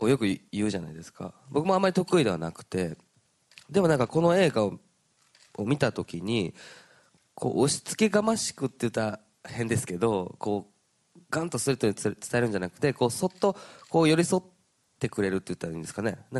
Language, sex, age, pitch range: Japanese, male, 20-39, 100-150 Hz